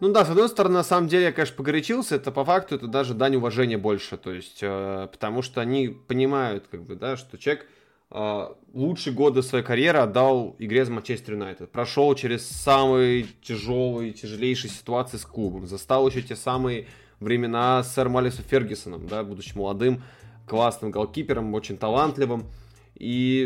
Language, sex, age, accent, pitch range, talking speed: Russian, male, 20-39, native, 110-140 Hz, 165 wpm